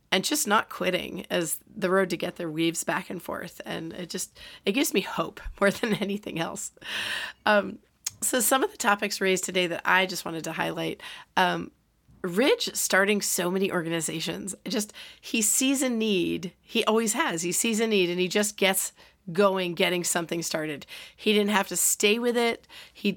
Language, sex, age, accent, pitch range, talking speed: English, female, 40-59, American, 170-210 Hz, 190 wpm